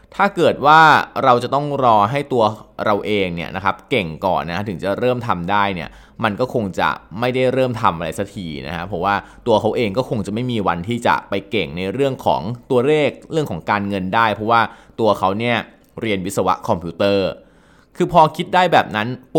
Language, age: Thai, 20-39